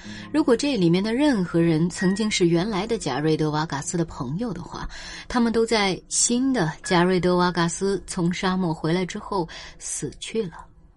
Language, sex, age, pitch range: Chinese, female, 20-39, 165-225 Hz